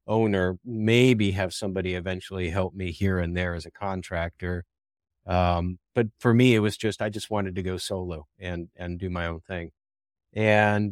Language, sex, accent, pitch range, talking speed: English, male, American, 90-115 Hz, 180 wpm